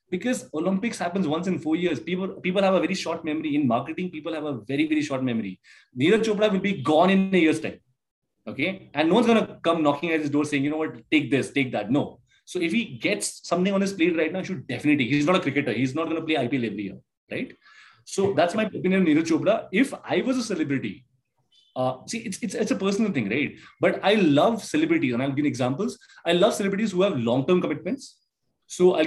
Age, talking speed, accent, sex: 30-49, 235 wpm, Indian, male